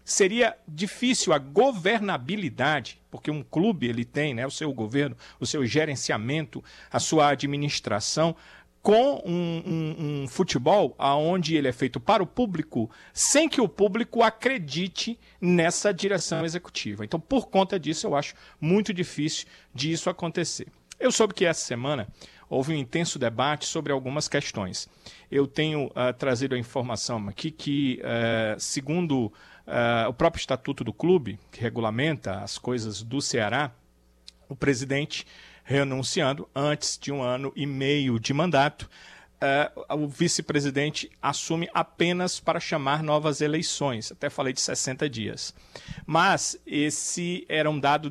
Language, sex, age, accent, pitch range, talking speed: Portuguese, male, 50-69, Brazilian, 130-170 Hz, 135 wpm